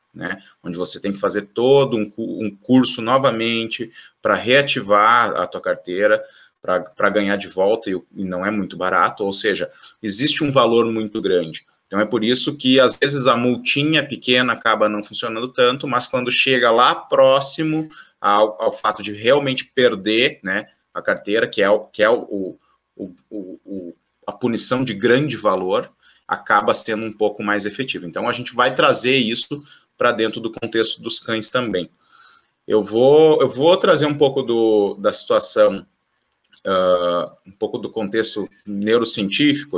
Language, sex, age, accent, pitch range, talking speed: Portuguese, male, 20-39, Brazilian, 105-135 Hz, 155 wpm